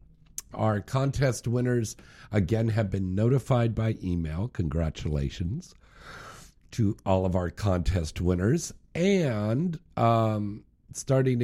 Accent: American